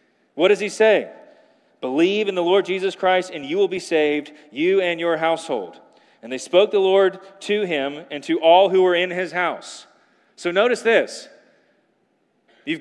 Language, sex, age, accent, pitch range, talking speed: English, male, 30-49, American, 160-225 Hz, 180 wpm